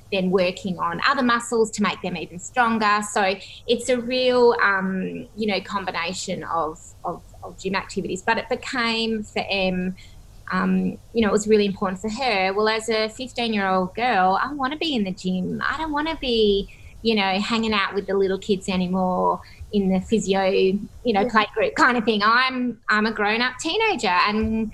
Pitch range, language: 190-235 Hz, English